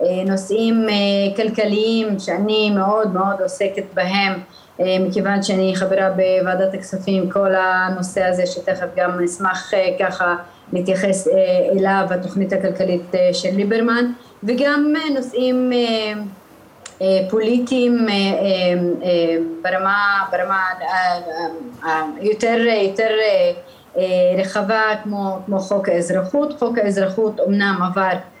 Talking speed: 80 wpm